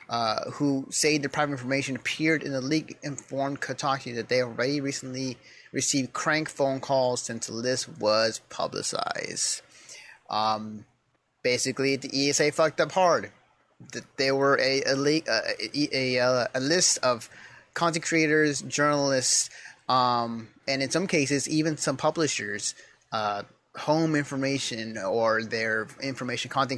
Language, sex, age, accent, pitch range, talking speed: English, male, 30-49, American, 120-155 Hz, 140 wpm